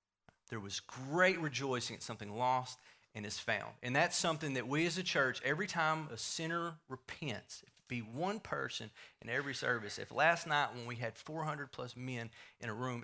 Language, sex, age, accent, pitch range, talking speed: English, male, 40-59, American, 120-150 Hz, 200 wpm